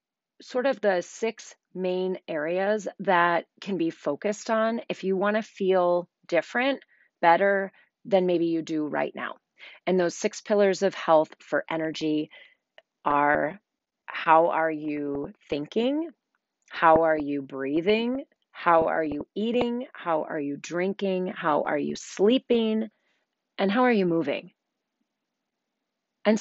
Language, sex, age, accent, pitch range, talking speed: English, female, 30-49, American, 165-220 Hz, 135 wpm